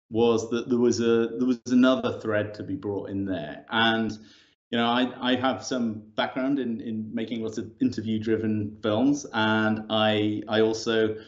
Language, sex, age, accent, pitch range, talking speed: English, male, 30-49, British, 110-130 Hz, 180 wpm